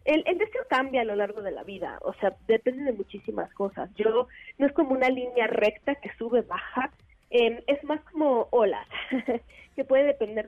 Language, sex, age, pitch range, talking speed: Spanish, female, 20-39, 220-280 Hz, 200 wpm